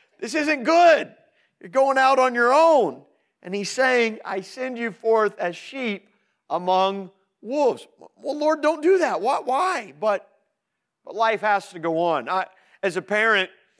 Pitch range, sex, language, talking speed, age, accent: 145-205 Hz, male, English, 160 wpm, 40-59, American